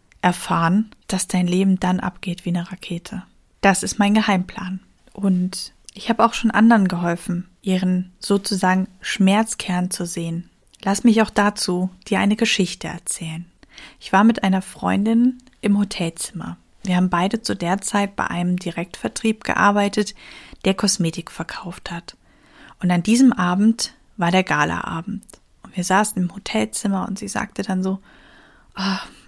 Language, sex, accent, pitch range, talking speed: German, female, German, 180-215 Hz, 150 wpm